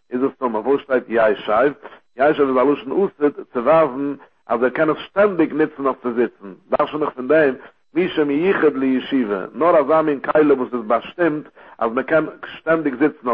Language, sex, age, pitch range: English, male, 60-79, 125-155 Hz